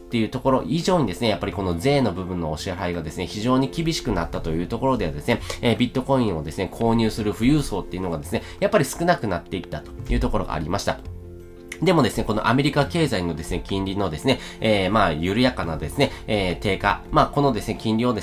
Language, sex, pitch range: Japanese, male, 95-130 Hz